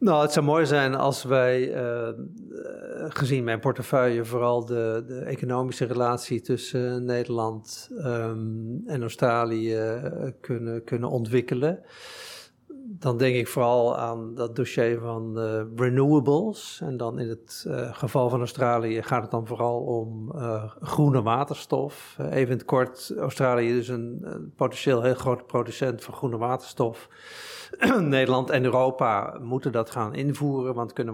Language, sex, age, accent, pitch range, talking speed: Dutch, male, 50-69, Dutch, 115-130 Hz, 145 wpm